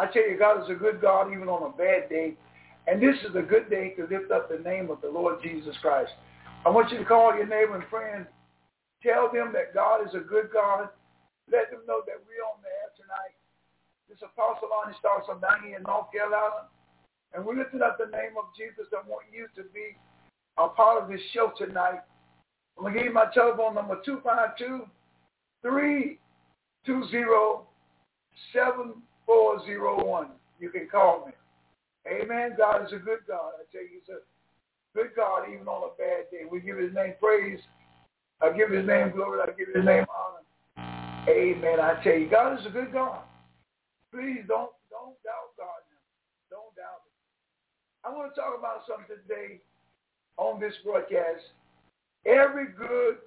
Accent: American